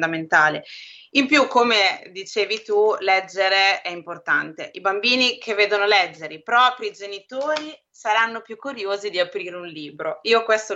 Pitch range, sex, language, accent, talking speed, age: 175-220 Hz, female, English, Italian, 140 wpm, 20-39